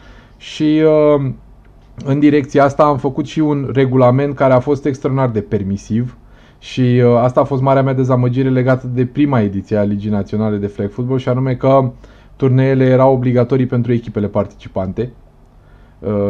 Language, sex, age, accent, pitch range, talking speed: Romanian, male, 20-39, native, 115-145 Hz, 160 wpm